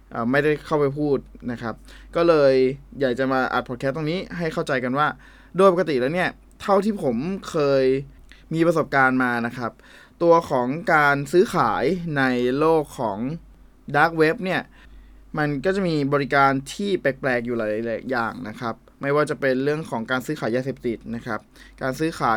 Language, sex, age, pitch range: Thai, male, 20-39, 125-160 Hz